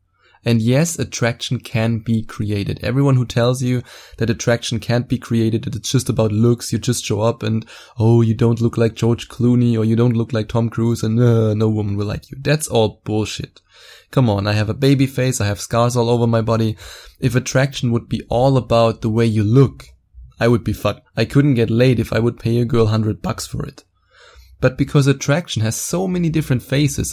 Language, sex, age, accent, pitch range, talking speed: English, male, 20-39, German, 110-130 Hz, 215 wpm